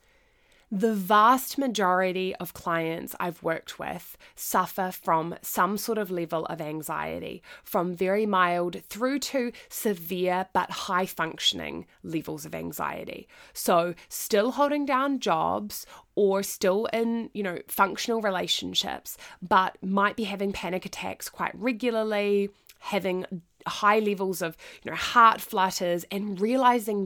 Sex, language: female, English